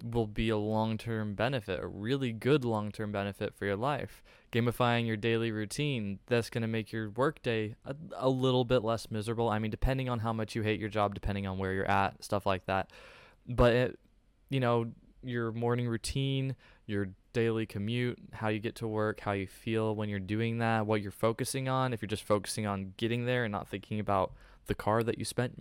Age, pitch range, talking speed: 20-39, 105-130 Hz, 210 wpm